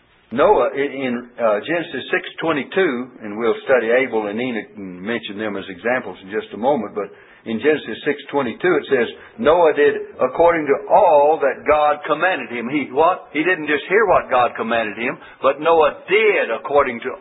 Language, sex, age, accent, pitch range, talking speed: English, male, 60-79, American, 130-200 Hz, 185 wpm